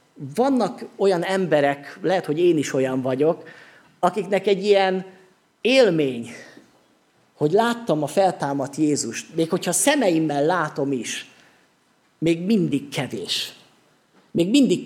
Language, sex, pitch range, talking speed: Hungarian, male, 145-195 Hz, 115 wpm